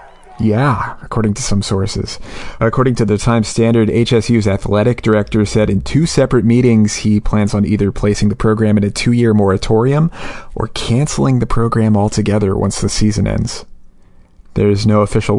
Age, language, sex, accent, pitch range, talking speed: 30-49, English, male, American, 100-115 Hz, 160 wpm